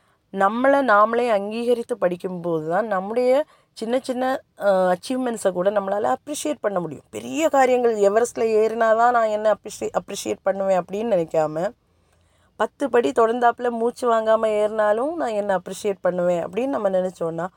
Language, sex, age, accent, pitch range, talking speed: Tamil, female, 20-39, native, 185-235 Hz, 130 wpm